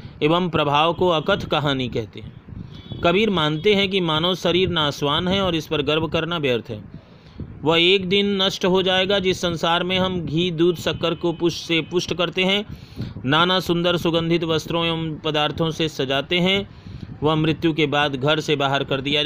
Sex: male